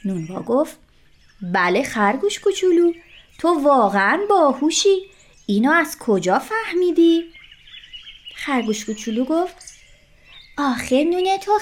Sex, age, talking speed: female, 30-49, 95 wpm